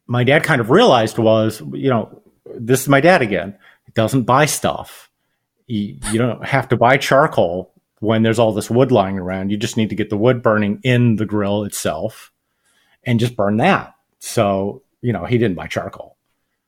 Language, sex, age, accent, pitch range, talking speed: English, male, 40-59, American, 105-140 Hz, 195 wpm